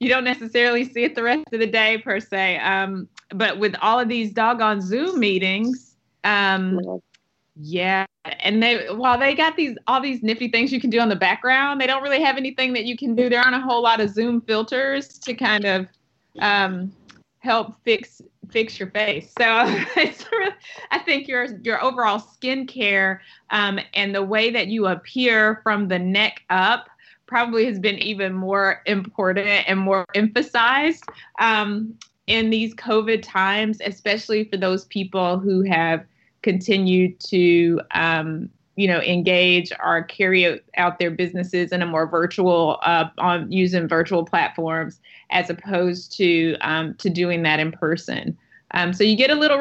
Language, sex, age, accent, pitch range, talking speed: English, female, 30-49, American, 185-235 Hz, 170 wpm